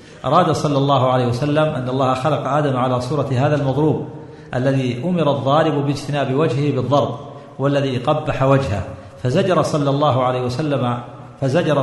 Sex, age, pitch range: male, 50-69, 130-155 Hz